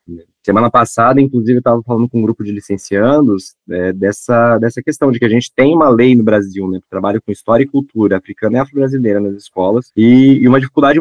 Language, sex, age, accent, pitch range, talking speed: Portuguese, male, 20-39, Brazilian, 105-125 Hz, 205 wpm